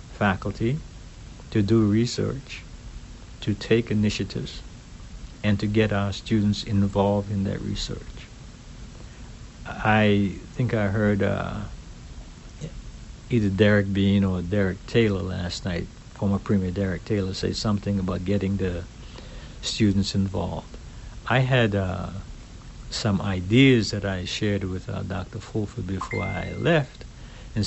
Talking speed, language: 120 wpm, English